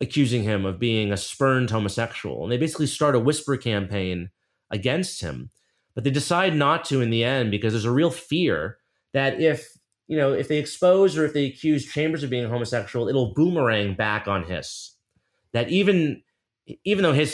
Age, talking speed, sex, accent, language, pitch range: 30-49, 185 wpm, male, American, English, 110-145 Hz